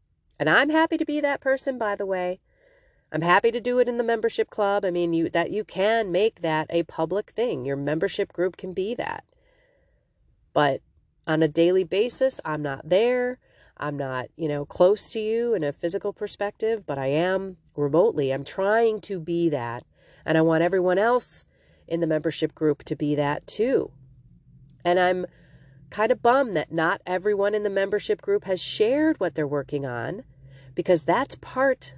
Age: 30-49